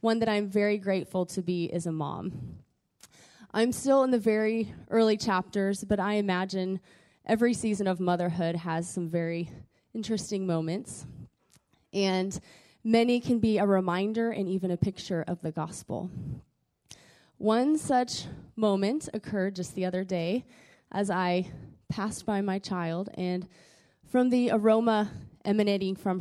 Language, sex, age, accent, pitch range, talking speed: English, female, 20-39, American, 180-225 Hz, 140 wpm